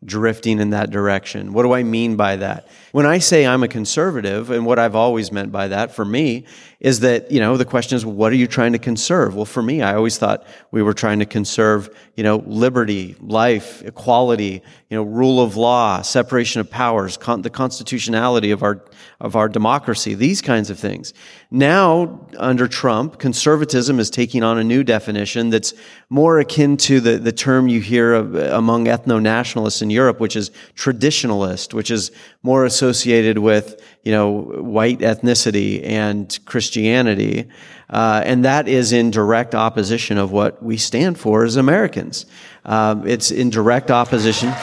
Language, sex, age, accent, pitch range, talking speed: English, male, 30-49, American, 110-130 Hz, 175 wpm